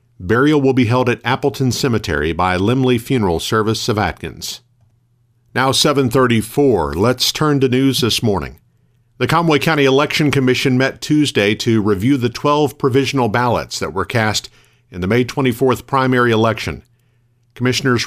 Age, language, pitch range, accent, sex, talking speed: 50-69, English, 105-130 Hz, American, male, 145 wpm